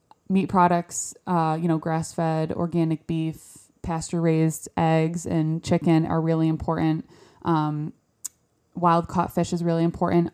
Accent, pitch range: American, 165-185 Hz